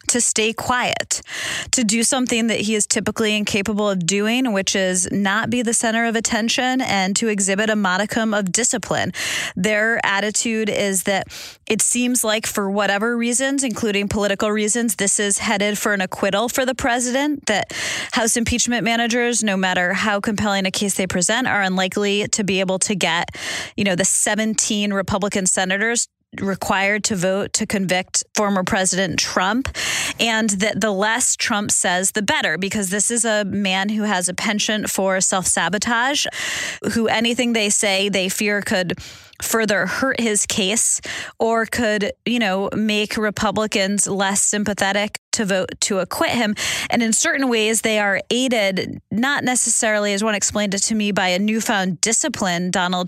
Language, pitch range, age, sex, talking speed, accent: English, 195-230 Hz, 20-39, female, 165 wpm, American